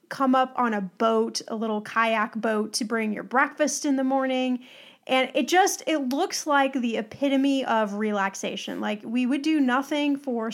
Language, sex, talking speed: English, female, 180 wpm